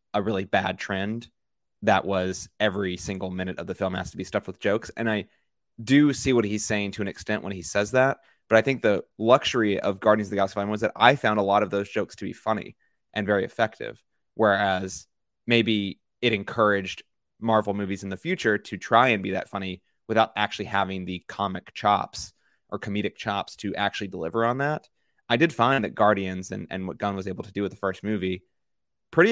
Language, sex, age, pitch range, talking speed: English, male, 20-39, 95-115 Hz, 215 wpm